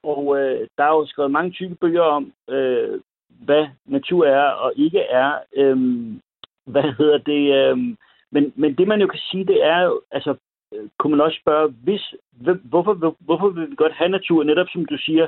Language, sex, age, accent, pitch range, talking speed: Danish, male, 60-79, native, 145-220 Hz, 190 wpm